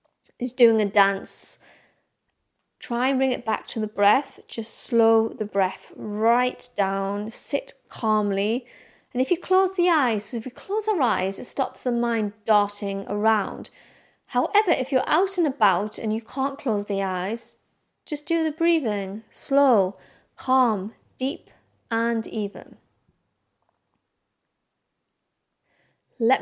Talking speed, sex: 135 wpm, female